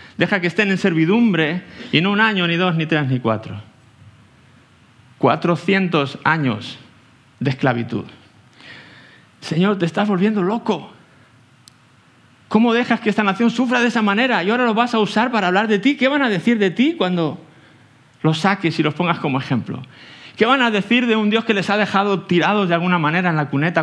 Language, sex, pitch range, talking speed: English, male, 140-195 Hz, 190 wpm